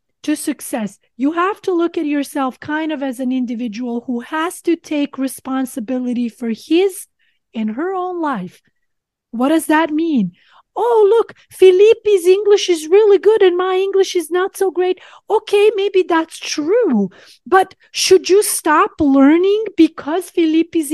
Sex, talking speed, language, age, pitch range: female, 150 wpm, English, 30-49, 255-365 Hz